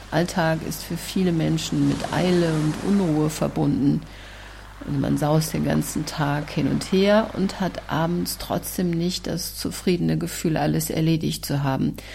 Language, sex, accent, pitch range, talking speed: German, female, German, 150-180 Hz, 155 wpm